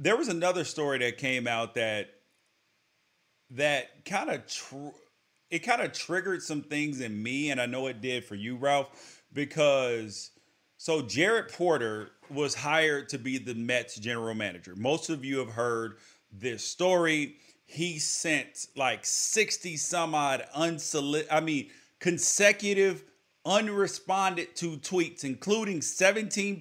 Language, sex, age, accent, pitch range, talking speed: English, male, 30-49, American, 135-180 Hz, 140 wpm